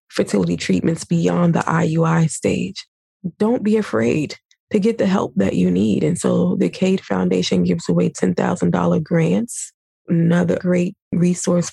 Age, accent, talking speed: 20-39, American, 145 wpm